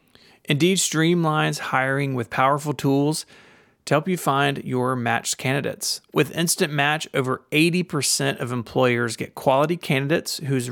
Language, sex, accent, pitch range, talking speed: English, male, American, 125-150 Hz, 135 wpm